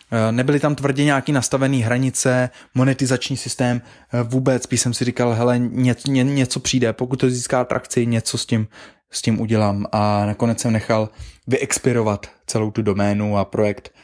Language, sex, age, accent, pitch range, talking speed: Czech, male, 20-39, native, 120-135 Hz, 160 wpm